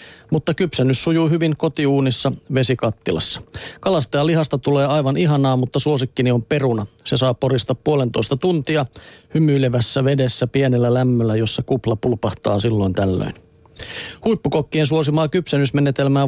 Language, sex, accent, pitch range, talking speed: Finnish, male, native, 125-155 Hz, 120 wpm